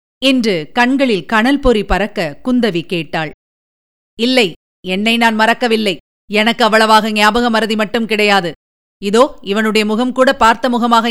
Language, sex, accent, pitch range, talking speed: Tamil, female, native, 205-240 Hz, 115 wpm